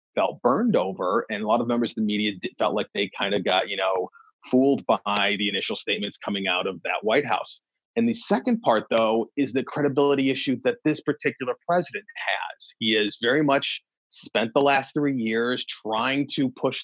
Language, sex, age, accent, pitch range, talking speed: English, male, 30-49, American, 110-145 Hz, 200 wpm